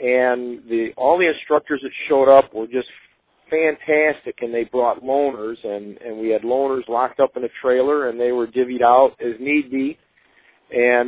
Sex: male